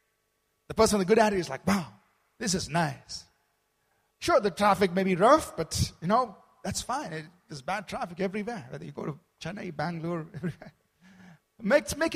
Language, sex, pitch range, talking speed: English, male, 165-205 Hz, 180 wpm